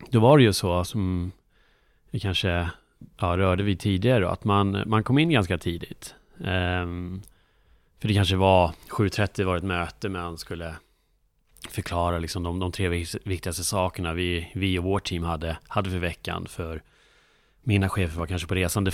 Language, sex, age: Swedish, male, 30-49